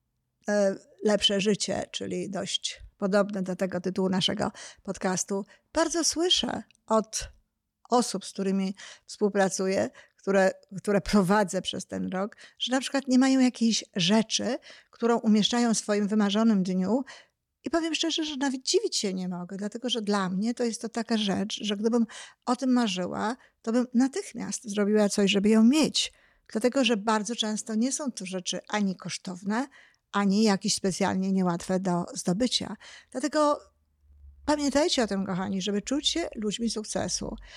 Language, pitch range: Polish, 190-240 Hz